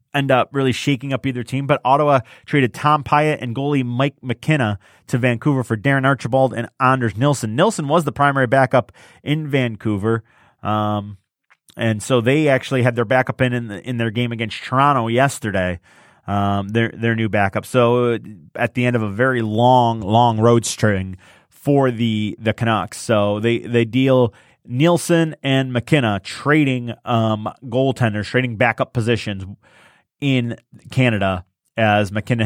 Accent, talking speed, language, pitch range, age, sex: American, 155 wpm, English, 115-145 Hz, 30-49, male